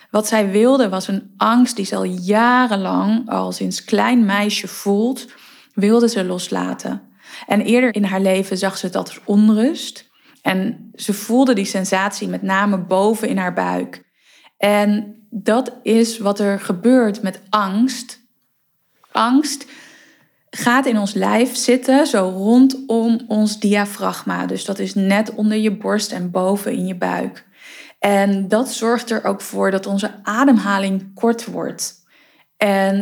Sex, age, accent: female, 20-39, Dutch